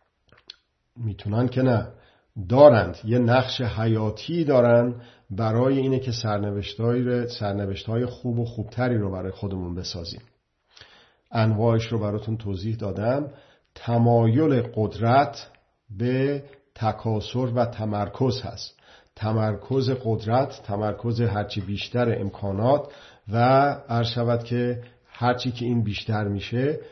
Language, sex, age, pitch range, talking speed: Persian, male, 50-69, 105-125 Hz, 100 wpm